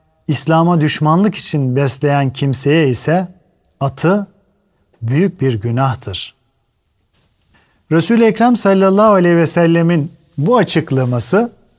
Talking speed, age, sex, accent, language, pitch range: 90 wpm, 40-59, male, native, Turkish, 130-175 Hz